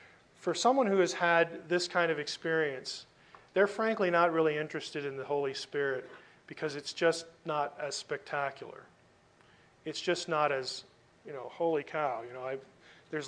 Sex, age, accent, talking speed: male, 40-59, American, 165 wpm